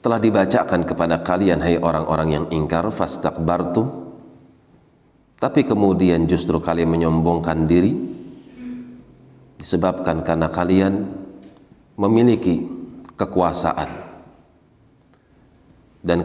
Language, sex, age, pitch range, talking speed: Indonesian, male, 40-59, 80-95 Hz, 80 wpm